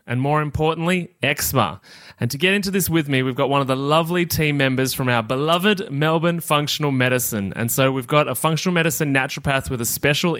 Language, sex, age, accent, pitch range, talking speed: English, male, 20-39, Australian, 125-160 Hz, 210 wpm